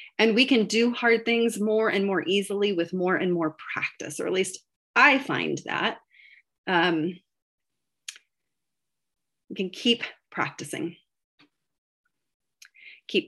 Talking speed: 120 wpm